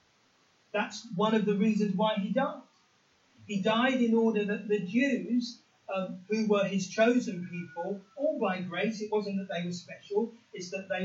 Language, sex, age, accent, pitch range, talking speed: English, male, 40-59, British, 200-255 Hz, 180 wpm